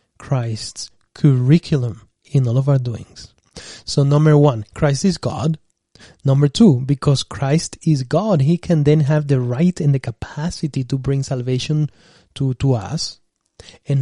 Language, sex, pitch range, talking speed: English, male, 125-155 Hz, 150 wpm